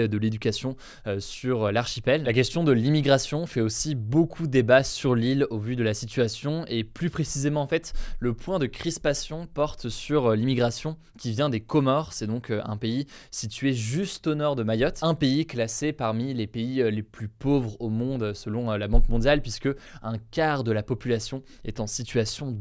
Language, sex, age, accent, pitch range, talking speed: French, male, 20-39, French, 115-145 Hz, 185 wpm